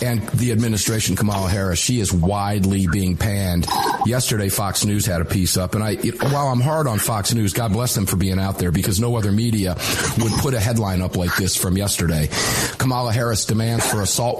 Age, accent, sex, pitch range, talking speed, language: 50-69, American, male, 95-130 Hz, 215 wpm, English